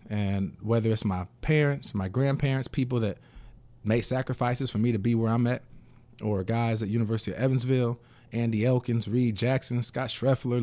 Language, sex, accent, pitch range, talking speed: English, male, American, 105-120 Hz, 170 wpm